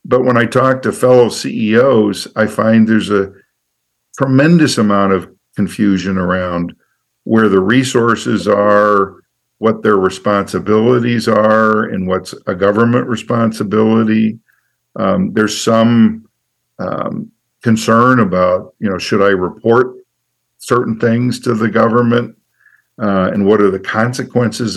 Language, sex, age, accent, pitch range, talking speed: English, male, 50-69, American, 95-115 Hz, 125 wpm